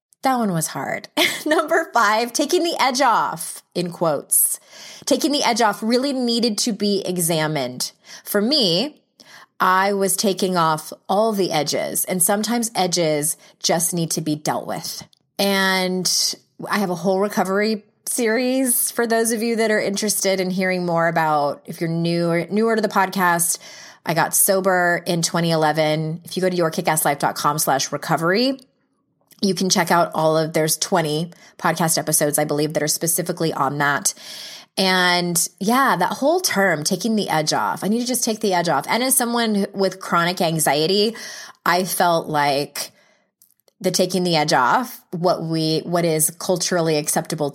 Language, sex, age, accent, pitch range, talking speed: English, female, 20-39, American, 160-210 Hz, 165 wpm